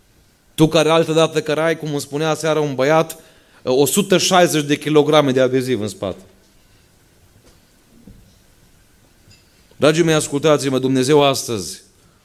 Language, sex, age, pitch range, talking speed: Romanian, male, 30-49, 95-125 Hz, 120 wpm